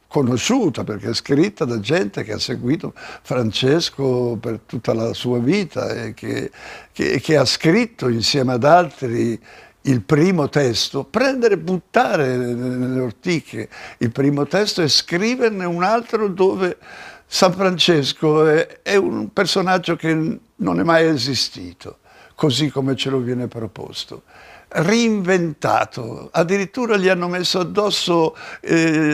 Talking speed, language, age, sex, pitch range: 130 wpm, Italian, 60-79, male, 130-180 Hz